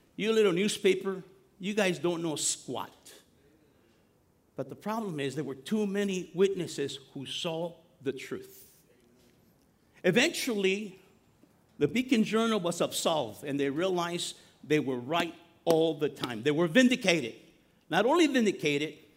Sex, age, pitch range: male, 50-69, 145-210 Hz